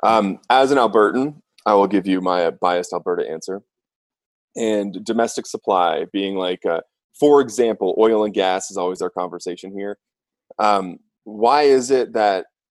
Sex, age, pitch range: male, 20-39, 100-120 Hz